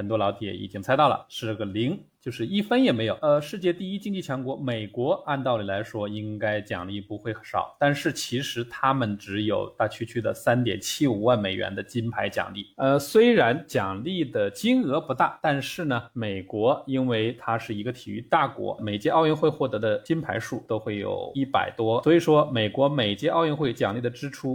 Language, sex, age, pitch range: Chinese, male, 20-39, 110-145 Hz